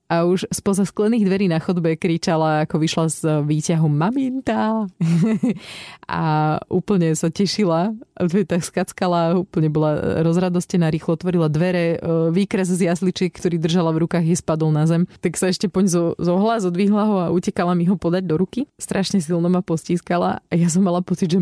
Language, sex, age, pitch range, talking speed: Slovak, female, 30-49, 155-190 Hz, 170 wpm